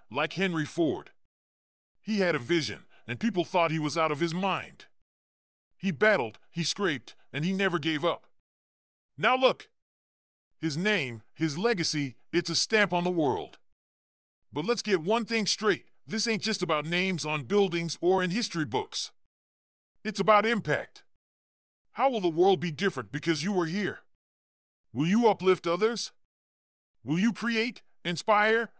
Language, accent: English, American